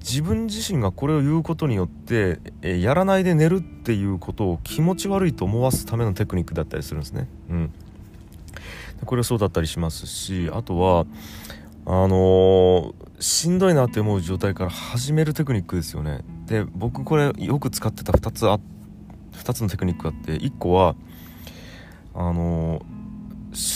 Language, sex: Japanese, male